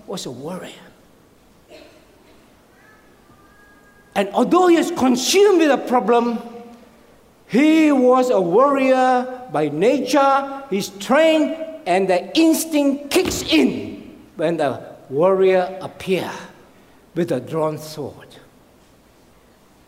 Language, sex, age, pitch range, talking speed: English, male, 60-79, 190-295 Hz, 95 wpm